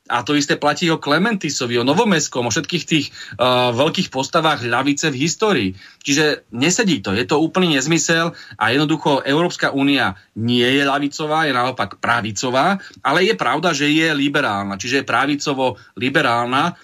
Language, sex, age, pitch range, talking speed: Slovak, male, 30-49, 125-150 Hz, 155 wpm